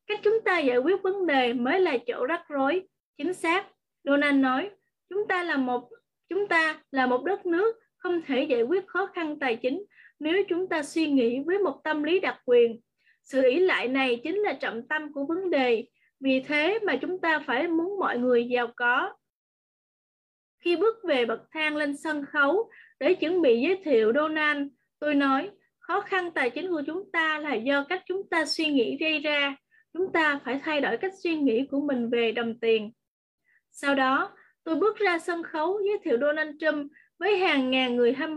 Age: 20-39